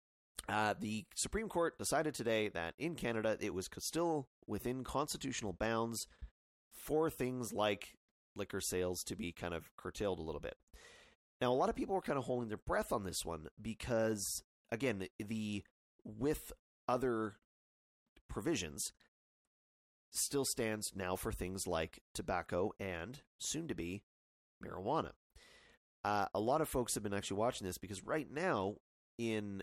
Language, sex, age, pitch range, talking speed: English, male, 30-49, 90-125 Hz, 150 wpm